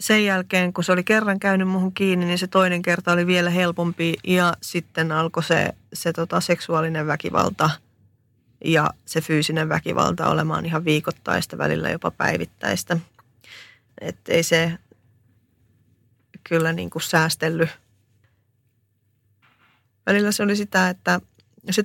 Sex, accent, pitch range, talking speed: female, native, 125-175 Hz, 125 wpm